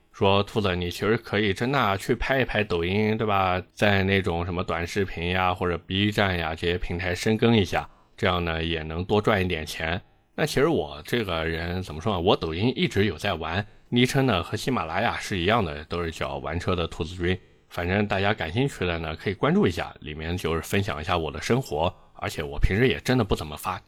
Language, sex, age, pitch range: Chinese, male, 20-39, 85-110 Hz